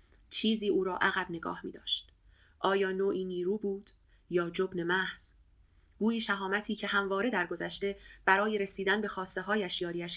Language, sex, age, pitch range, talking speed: Persian, female, 30-49, 180-205 Hz, 150 wpm